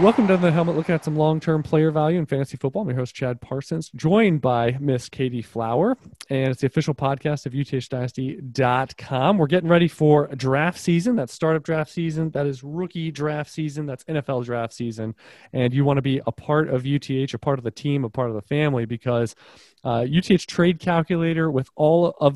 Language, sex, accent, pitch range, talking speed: English, male, American, 125-150 Hz, 205 wpm